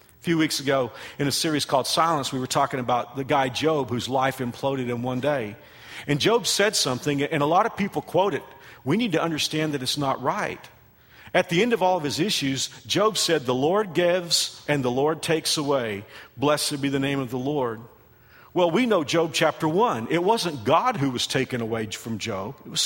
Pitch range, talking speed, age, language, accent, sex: 135-165 Hz, 215 wpm, 50-69, English, American, male